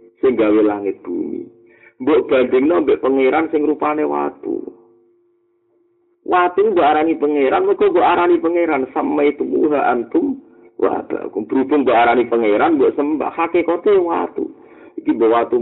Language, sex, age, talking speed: Indonesian, male, 50-69, 140 wpm